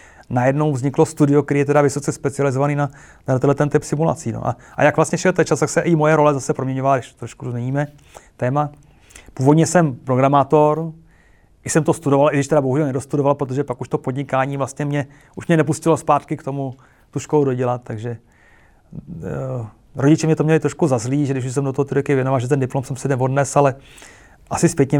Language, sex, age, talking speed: Czech, male, 30-49, 195 wpm